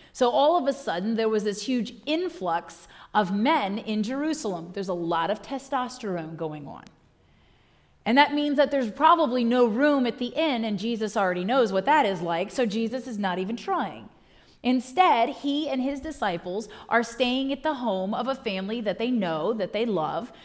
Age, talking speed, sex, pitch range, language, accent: 30-49, 190 wpm, female, 205-280 Hz, English, American